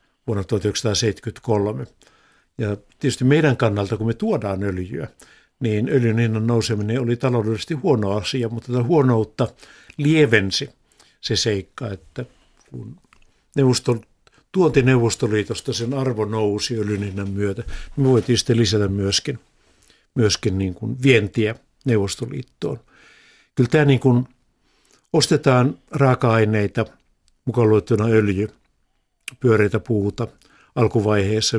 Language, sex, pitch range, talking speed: Finnish, male, 105-130 Hz, 110 wpm